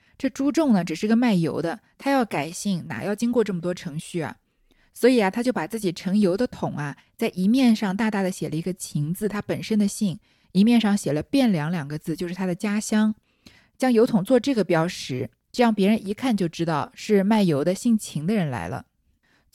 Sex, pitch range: female, 175-235 Hz